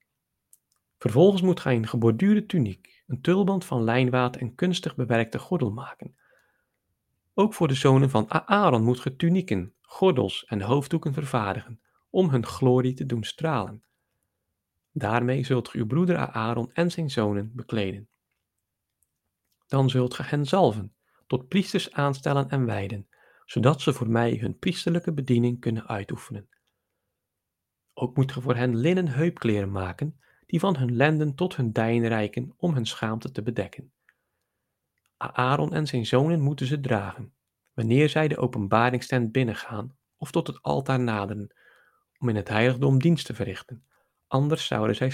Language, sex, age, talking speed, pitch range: Dutch, male, 40-59, 150 wpm, 115-150 Hz